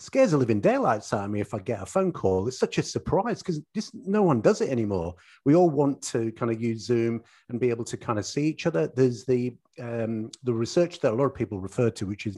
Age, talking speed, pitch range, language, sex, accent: 40-59, 260 wpm, 105-130 Hz, English, male, British